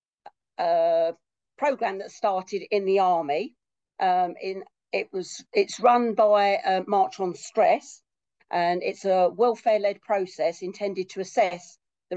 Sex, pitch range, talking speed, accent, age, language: female, 185-230 Hz, 120 wpm, British, 50-69, English